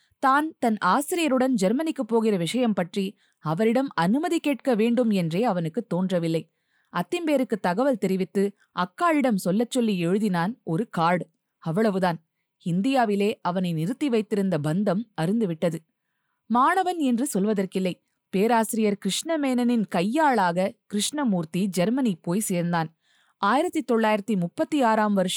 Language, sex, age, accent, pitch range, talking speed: Tamil, female, 20-39, native, 180-250 Hz, 100 wpm